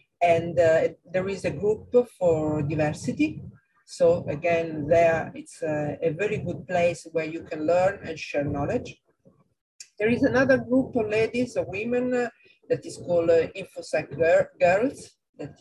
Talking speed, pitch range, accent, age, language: 155 wpm, 150-230 Hz, Italian, 50-69, English